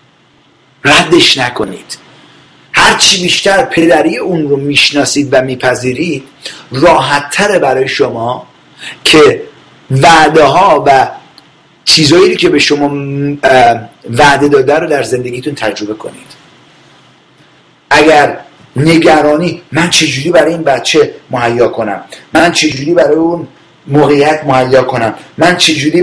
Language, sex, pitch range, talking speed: English, male, 135-165 Hz, 105 wpm